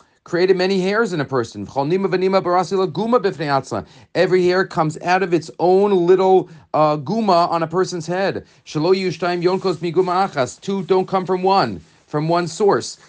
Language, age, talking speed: English, 40-59, 130 wpm